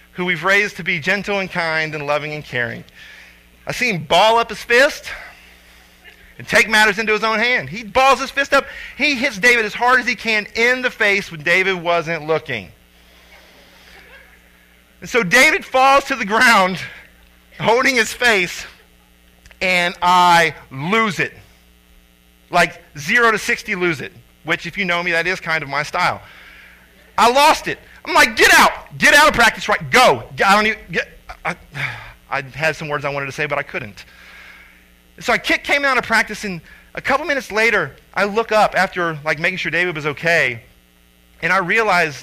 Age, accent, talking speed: 40-59, American, 185 wpm